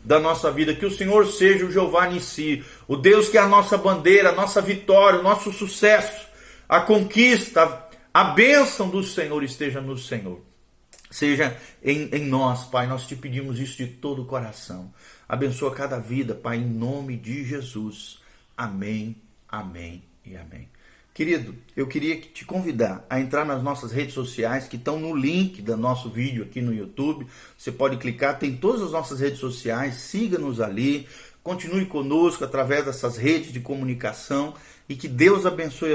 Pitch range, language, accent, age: 115-155 Hz, Portuguese, Brazilian, 50-69